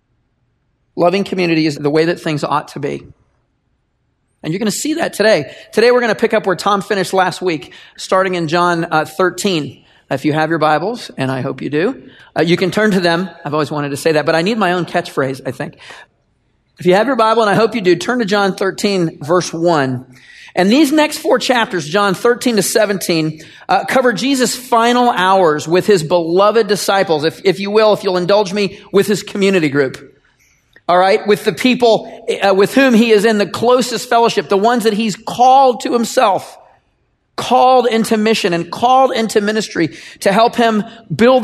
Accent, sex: American, male